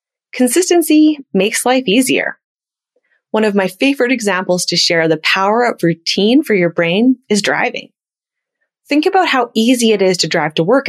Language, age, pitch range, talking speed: English, 30-49, 175-250 Hz, 165 wpm